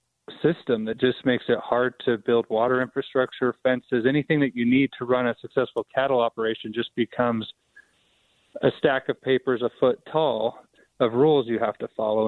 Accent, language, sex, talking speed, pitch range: American, English, male, 175 wpm, 115-125 Hz